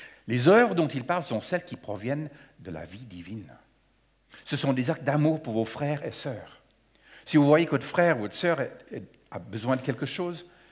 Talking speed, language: 205 wpm, French